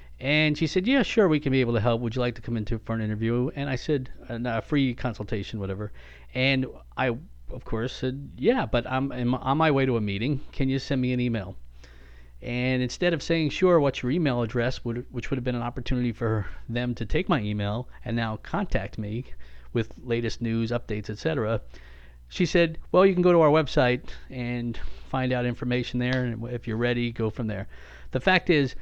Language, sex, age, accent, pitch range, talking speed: English, male, 40-59, American, 115-140 Hz, 210 wpm